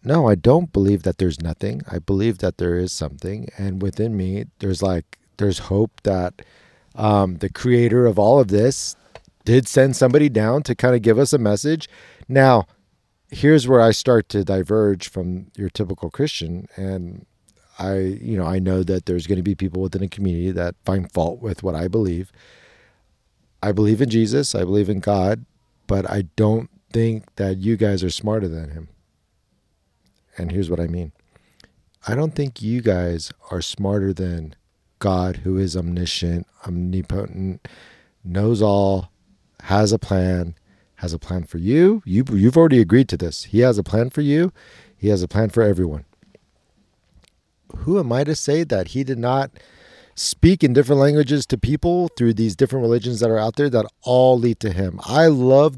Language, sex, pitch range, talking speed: English, male, 95-125 Hz, 180 wpm